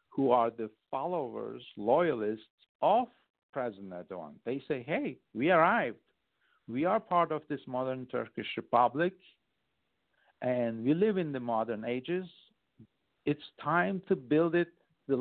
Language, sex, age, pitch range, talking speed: English, male, 50-69, 115-155 Hz, 135 wpm